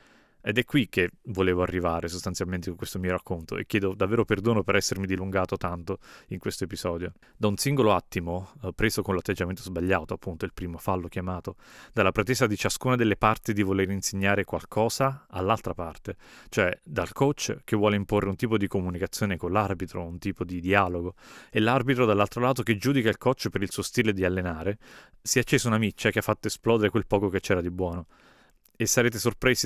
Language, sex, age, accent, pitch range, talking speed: Italian, male, 30-49, native, 95-110 Hz, 195 wpm